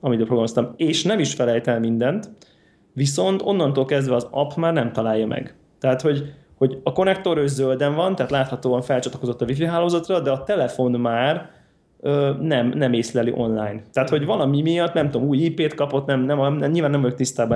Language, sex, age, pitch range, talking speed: Hungarian, male, 20-39, 120-150 Hz, 190 wpm